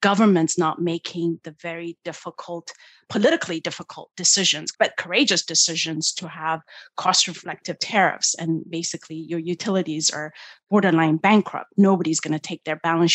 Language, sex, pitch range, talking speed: English, female, 160-185 Hz, 135 wpm